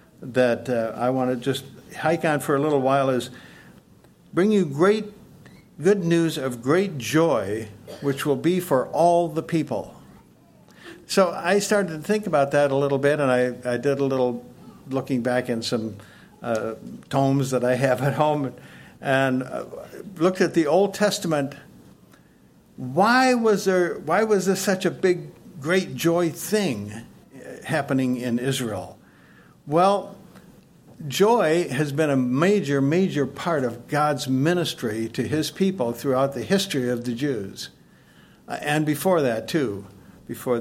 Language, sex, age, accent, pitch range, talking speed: English, male, 60-79, American, 125-175 Hz, 150 wpm